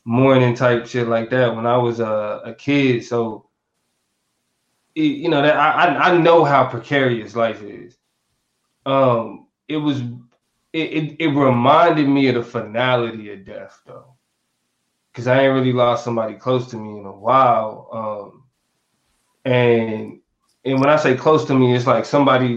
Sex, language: male, English